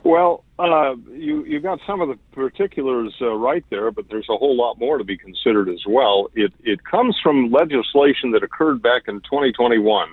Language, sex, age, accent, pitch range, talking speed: English, male, 50-69, American, 115-175 Hz, 195 wpm